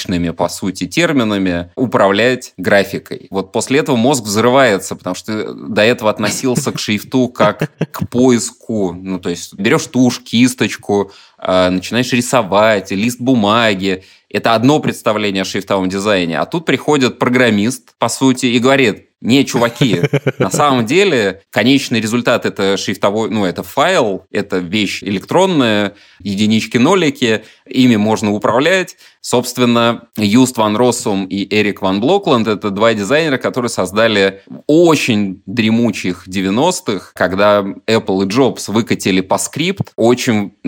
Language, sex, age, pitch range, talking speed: Russian, male, 20-39, 100-125 Hz, 125 wpm